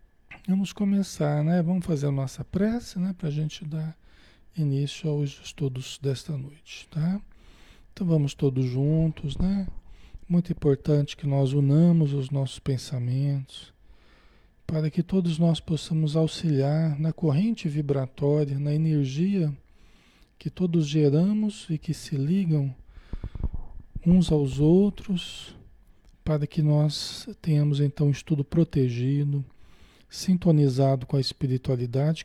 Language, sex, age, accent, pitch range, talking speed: Portuguese, male, 40-59, Brazilian, 130-165 Hz, 120 wpm